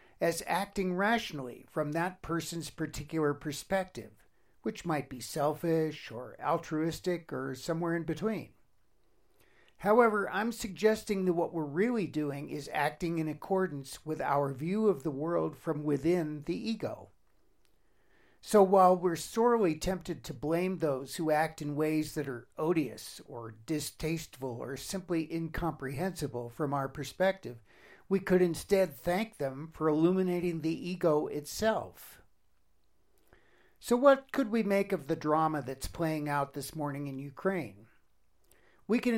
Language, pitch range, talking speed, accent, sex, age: English, 145-185 Hz, 140 wpm, American, male, 60-79